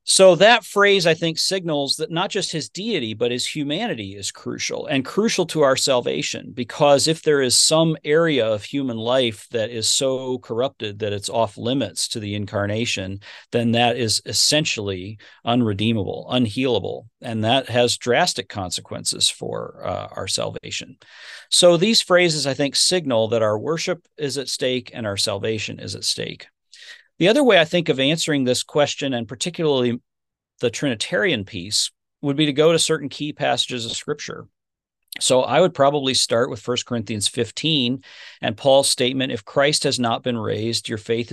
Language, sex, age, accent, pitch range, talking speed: English, male, 40-59, American, 115-150 Hz, 170 wpm